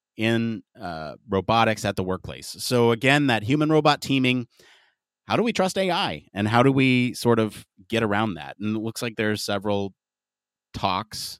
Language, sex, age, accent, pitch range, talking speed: English, male, 30-49, American, 95-135 Hz, 170 wpm